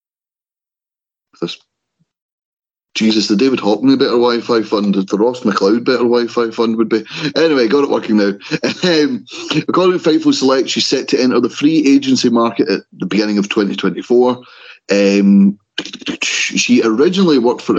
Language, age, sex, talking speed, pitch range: English, 30-49, male, 145 wpm, 100-125 Hz